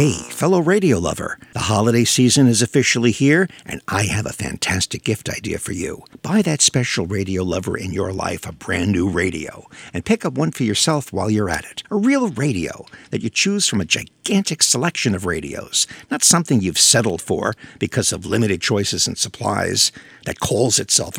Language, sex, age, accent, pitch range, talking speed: English, male, 50-69, American, 105-145 Hz, 190 wpm